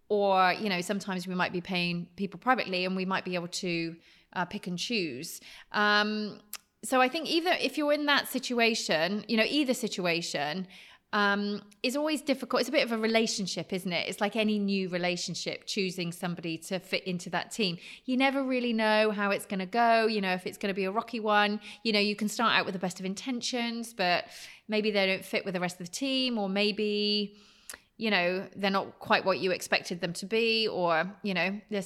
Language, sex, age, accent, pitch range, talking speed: English, female, 30-49, British, 185-245 Hz, 220 wpm